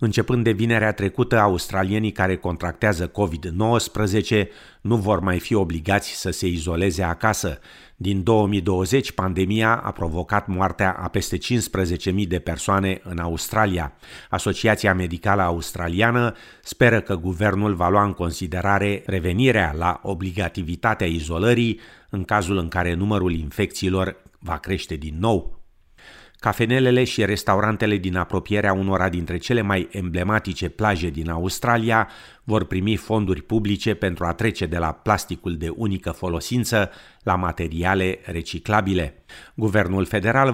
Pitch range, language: 90-110 Hz, Romanian